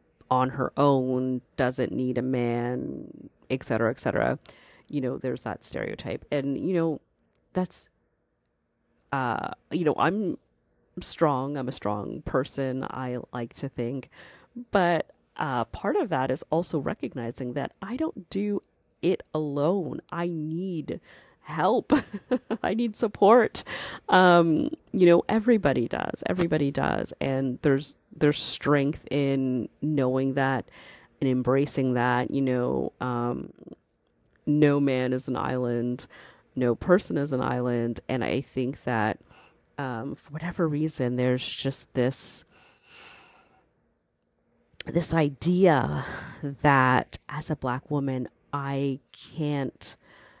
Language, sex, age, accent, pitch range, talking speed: English, female, 40-59, American, 125-160 Hz, 125 wpm